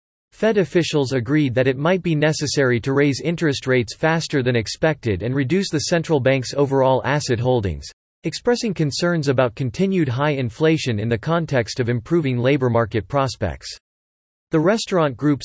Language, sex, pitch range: English, male, 120-160 Hz